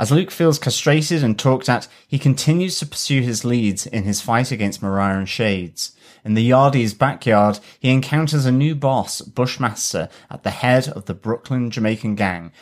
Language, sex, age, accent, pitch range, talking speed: English, male, 30-49, British, 110-150 Hz, 180 wpm